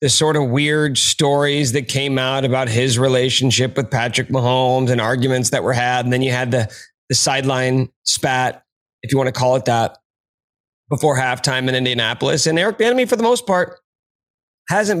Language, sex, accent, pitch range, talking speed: English, male, American, 130-175 Hz, 185 wpm